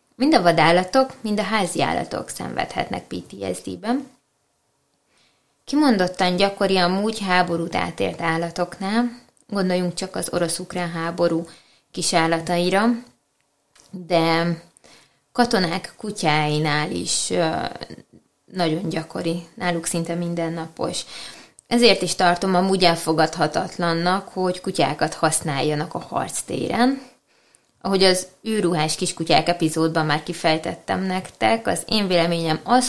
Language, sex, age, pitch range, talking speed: Hungarian, female, 20-39, 165-195 Hz, 100 wpm